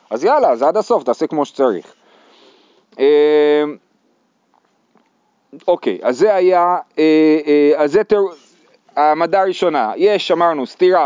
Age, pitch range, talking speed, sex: 40-59, 150-225 Hz, 130 wpm, male